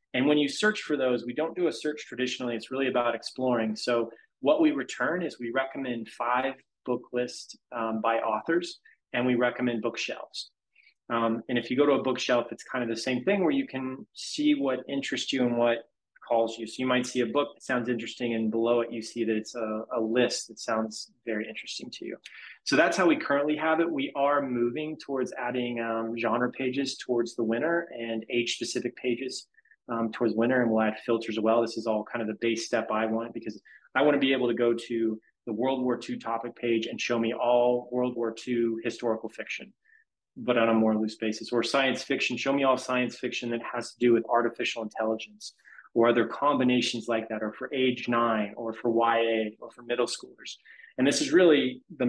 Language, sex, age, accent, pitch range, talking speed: English, male, 20-39, American, 115-130 Hz, 220 wpm